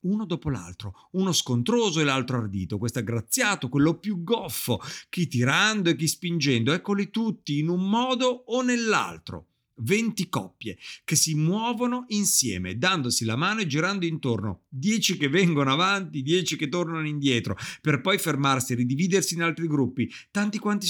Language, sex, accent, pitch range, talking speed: Italian, male, native, 125-185 Hz, 160 wpm